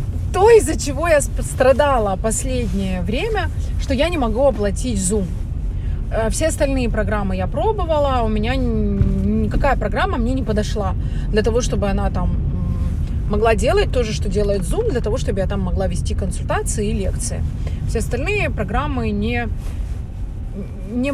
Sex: female